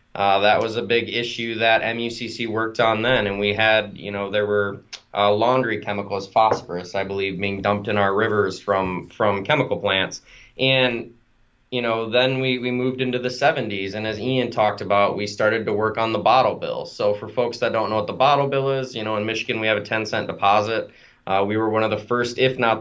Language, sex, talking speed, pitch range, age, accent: English, male, 225 wpm, 105-130 Hz, 20-39, American